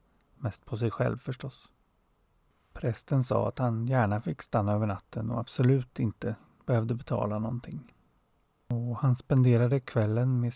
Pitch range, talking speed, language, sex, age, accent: 115-130 Hz, 135 wpm, Swedish, male, 30-49, native